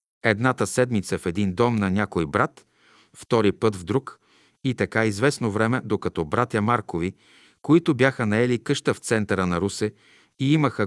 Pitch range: 95-125 Hz